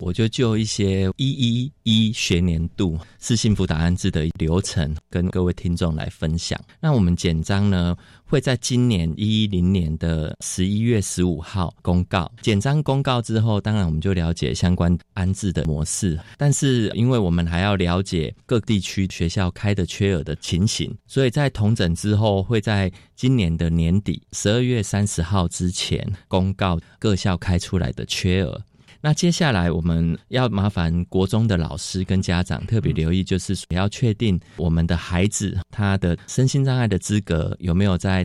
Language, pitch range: Chinese, 85-110 Hz